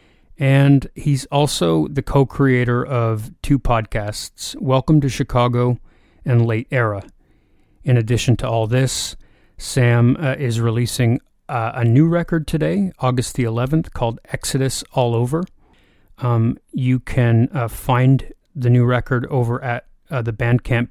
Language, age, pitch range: English, 30-49, 115-130 Hz